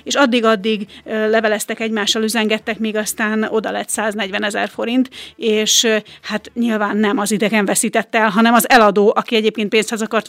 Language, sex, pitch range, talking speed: Hungarian, female, 215-245 Hz, 155 wpm